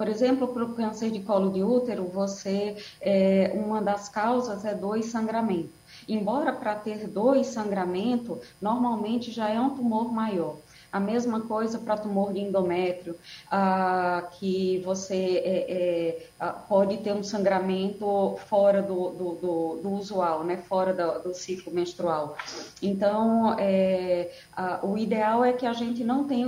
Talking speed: 140 wpm